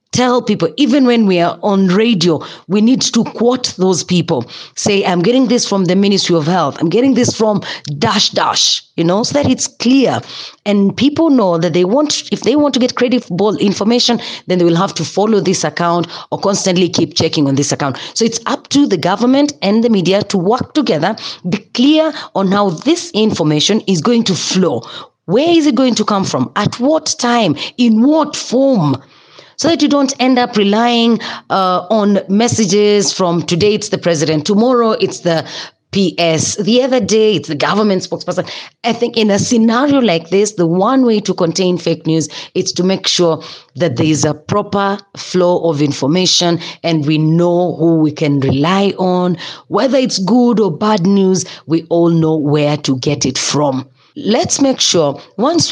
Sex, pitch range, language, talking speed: female, 170-235 Hz, English, 190 wpm